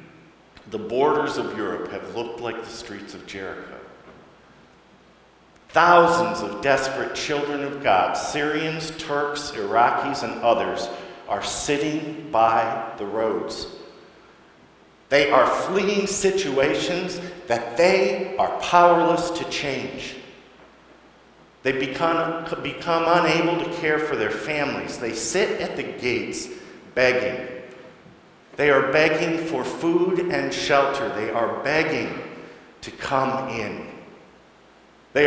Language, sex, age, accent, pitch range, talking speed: English, male, 50-69, American, 115-165 Hz, 110 wpm